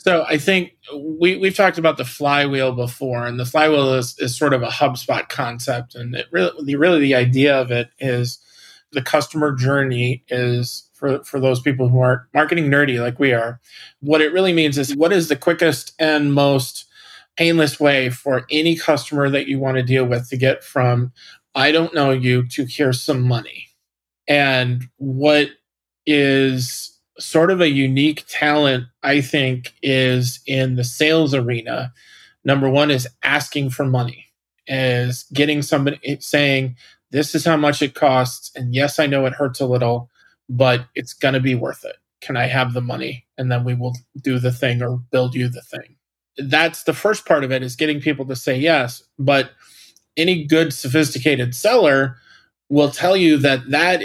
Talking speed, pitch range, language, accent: 180 wpm, 125-150 Hz, English, American